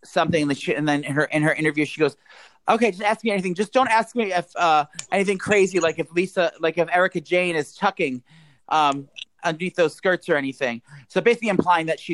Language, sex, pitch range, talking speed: English, male, 140-170 Hz, 230 wpm